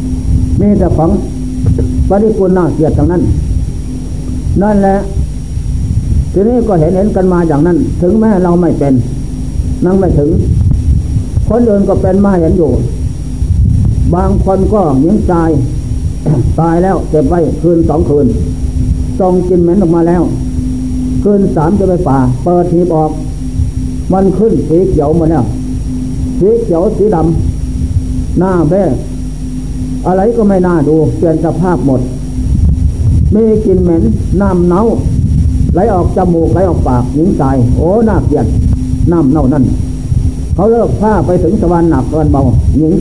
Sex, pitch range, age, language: male, 125-185 Hz, 60-79, Thai